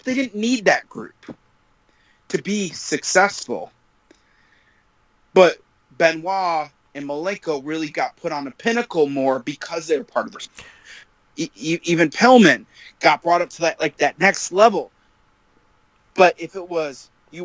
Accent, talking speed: American, 140 wpm